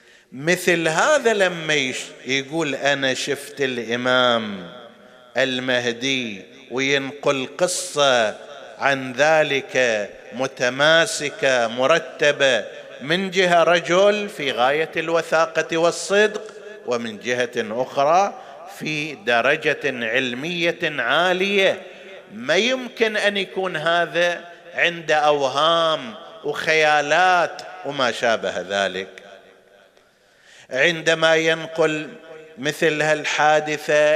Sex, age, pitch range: male, 50-69, 135-190 Hz